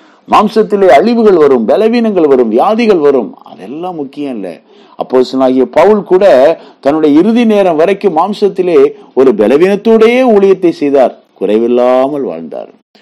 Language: Tamil